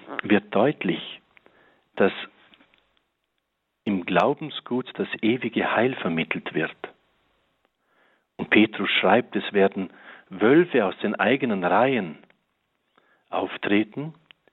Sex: male